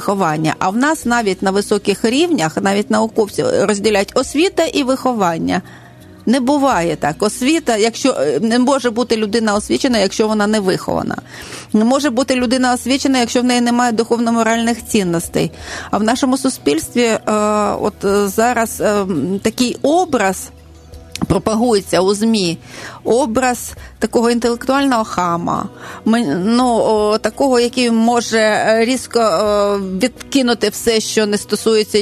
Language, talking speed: Ukrainian, 125 wpm